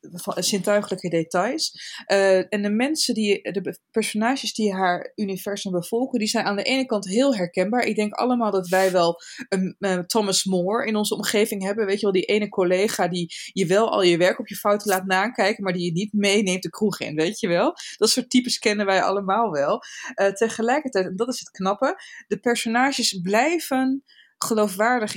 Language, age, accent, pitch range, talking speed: Dutch, 20-39, Dutch, 180-220 Hz, 195 wpm